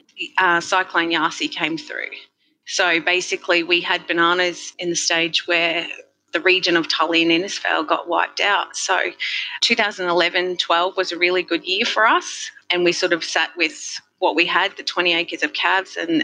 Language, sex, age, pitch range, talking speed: English, female, 30-49, 170-230 Hz, 175 wpm